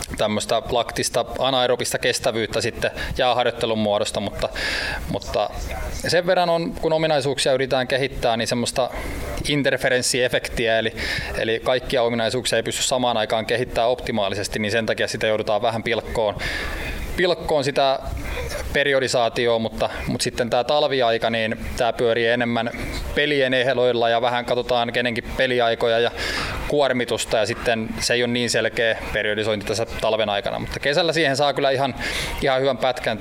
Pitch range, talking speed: 115-130 Hz, 140 wpm